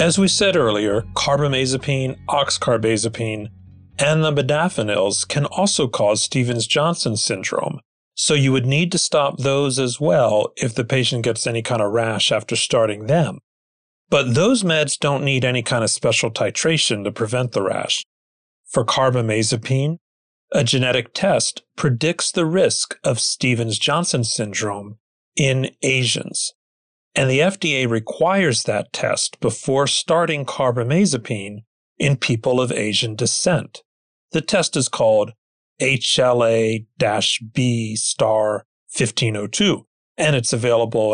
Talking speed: 120 wpm